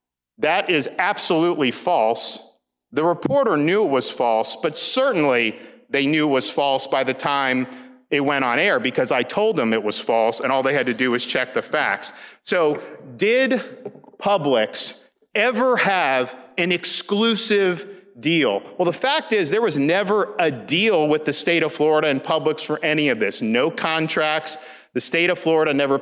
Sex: male